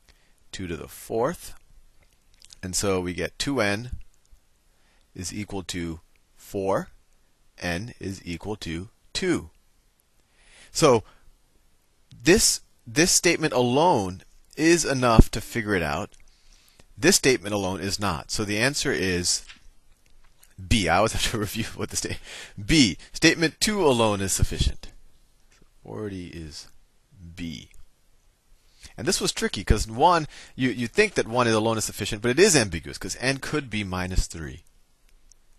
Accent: American